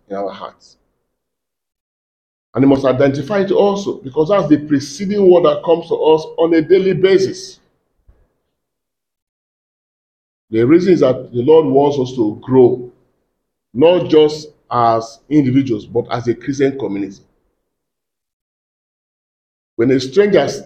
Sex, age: male, 40-59